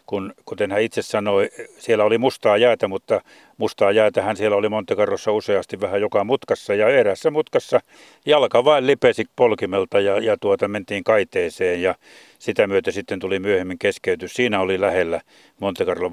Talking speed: 160 wpm